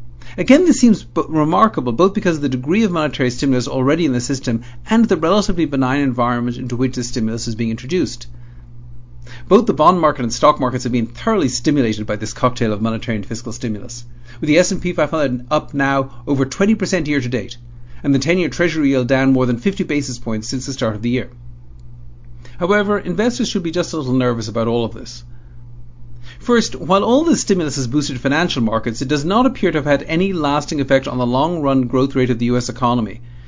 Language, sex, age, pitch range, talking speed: English, male, 50-69, 120-160 Hz, 205 wpm